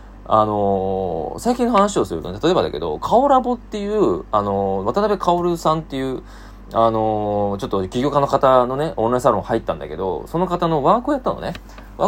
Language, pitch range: Japanese, 105-165 Hz